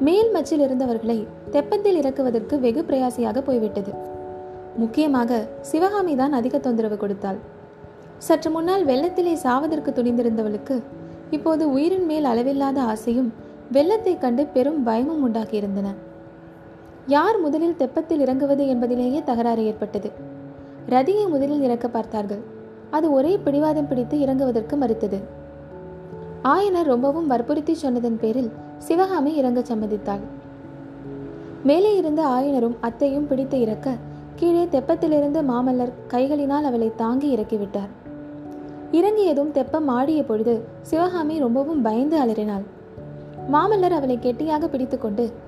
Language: Tamil